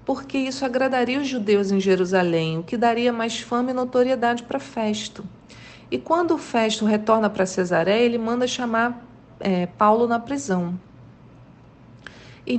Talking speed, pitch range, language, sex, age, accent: 145 wpm, 195-245 Hz, Portuguese, female, 50-69, Brazilian